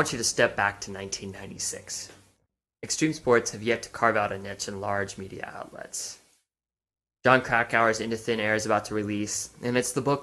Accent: American